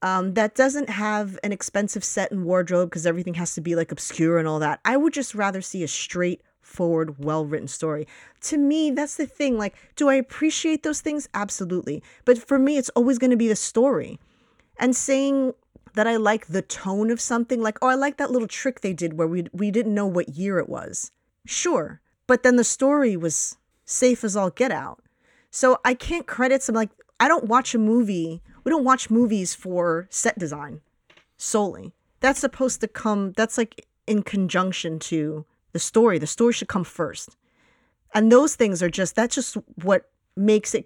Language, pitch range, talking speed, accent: English, 175-245 Hz, 195 wpm, American